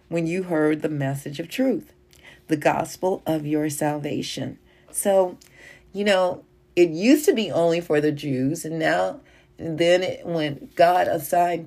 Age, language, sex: 40-59, English, female